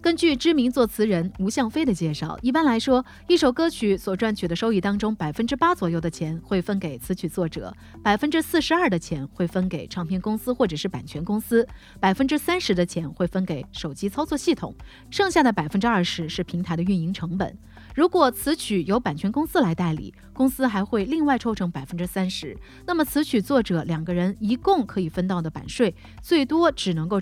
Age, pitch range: 30-49, 175-255 Hz